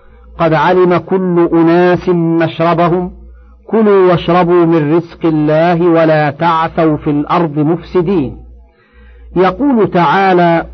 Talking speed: 95 wpm